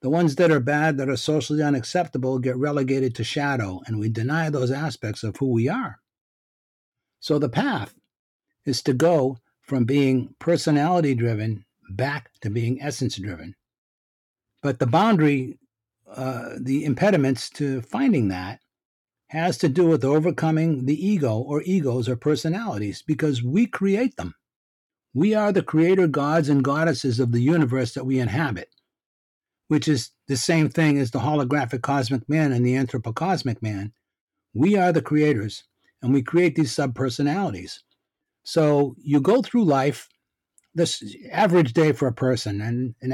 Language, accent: English, American